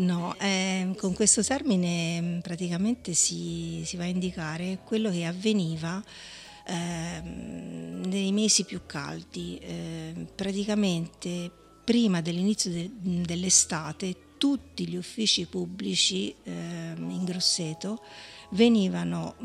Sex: female